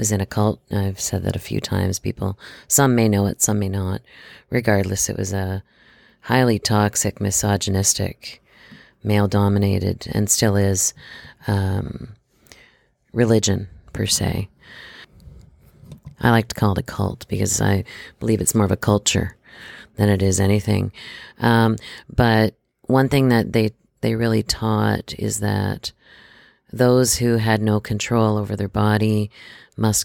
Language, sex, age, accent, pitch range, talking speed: English, female, 40-59, American, 100-115 Hz, 145 wpm